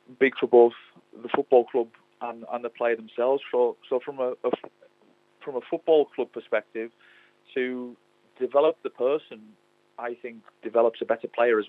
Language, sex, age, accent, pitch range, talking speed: English, male, 30-49, British, 110-135 Hz, 170 wpm